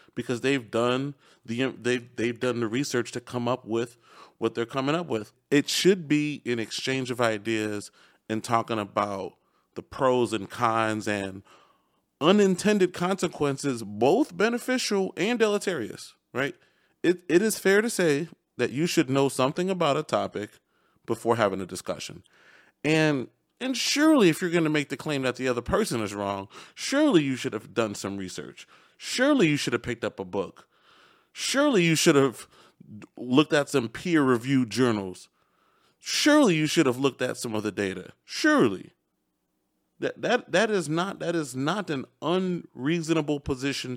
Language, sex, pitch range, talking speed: English, male, 120-195 Hz, 165 wpm